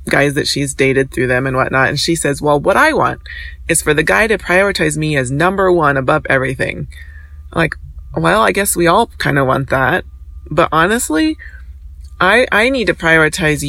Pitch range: 125-175 Hz